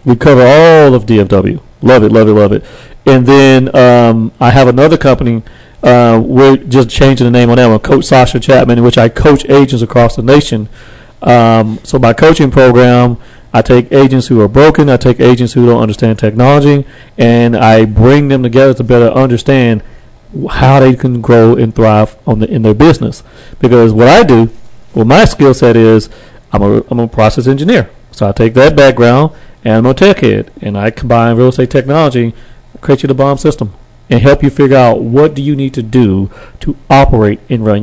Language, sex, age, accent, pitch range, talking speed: English, male, 40-59, American, 115-140 Hz, 200 wpm